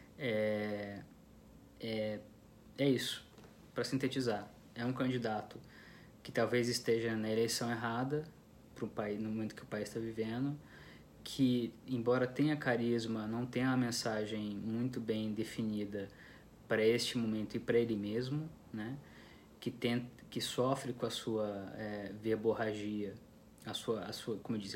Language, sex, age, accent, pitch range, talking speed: Portuguese, male, 20-39, Brazilian, 110-125 Hz, 145 wpm